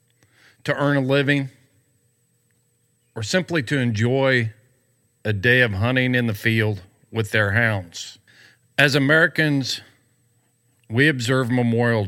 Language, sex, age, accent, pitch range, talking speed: English, male, 40-59, American, 110-125 Hz, 115 wpm